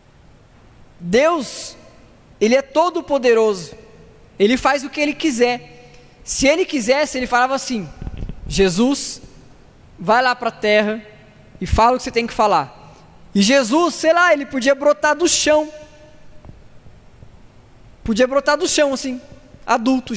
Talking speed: 135 wpm